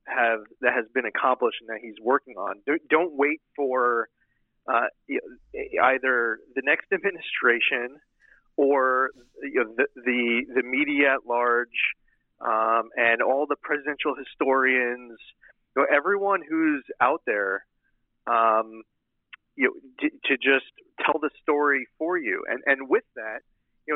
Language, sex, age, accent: English, male, 30-49, American